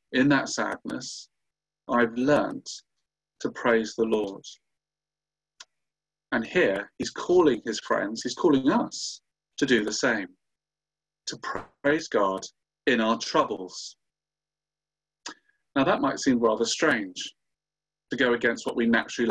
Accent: British